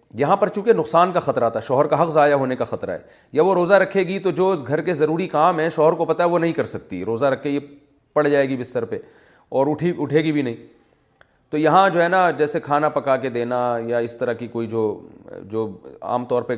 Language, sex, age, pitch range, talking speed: Urdu, male, 40-59, 120-180 Hz, 255 wpm